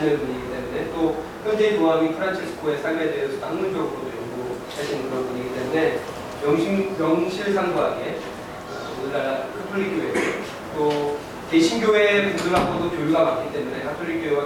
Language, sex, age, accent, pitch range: Korean, male, 30-49, native, 155-200 Hz